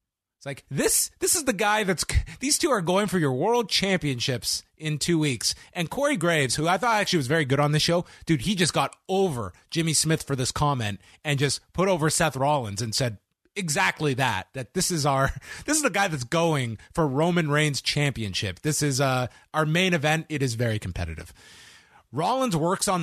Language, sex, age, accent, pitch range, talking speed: English, male, 30-49, American, 130-175 Hz, 205 wpm